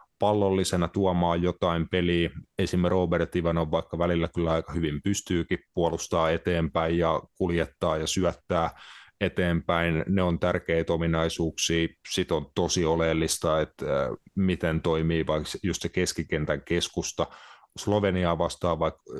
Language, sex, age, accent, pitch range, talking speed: Finnish, male, 30-49, native, 80-90 Hz, 120 wpm